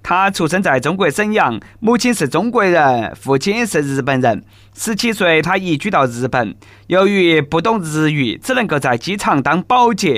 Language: Chinese